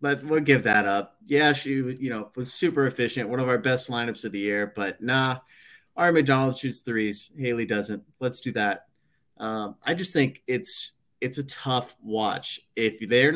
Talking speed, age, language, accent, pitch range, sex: 190 wpm, 30-49, English, American, 110-145 Hz, male